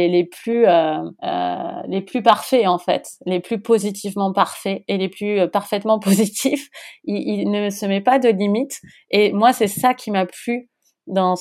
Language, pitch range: French, 180-220 Hz